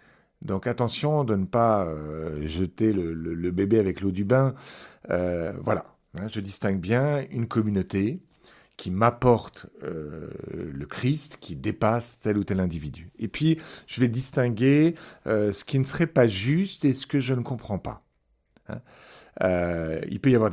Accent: French